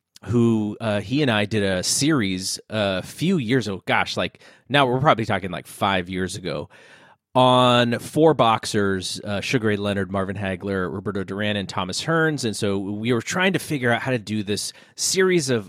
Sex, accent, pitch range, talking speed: male, American, 100-135 Hz, 190 wpm